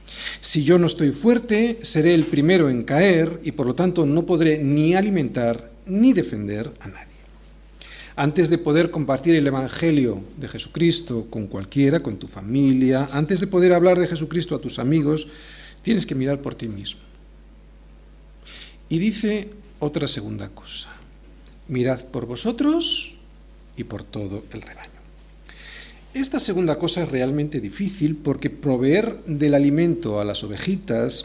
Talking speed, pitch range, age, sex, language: 145 wpm, 115-175 Hz, 40-59, male, Spanish